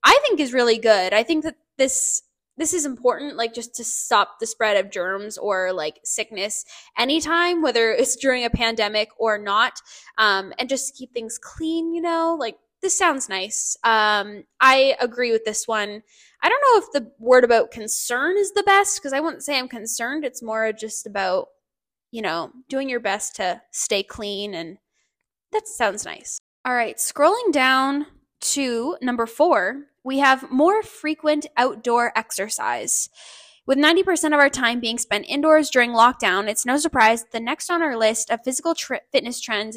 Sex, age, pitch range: female, 10-29, 220-295 Hz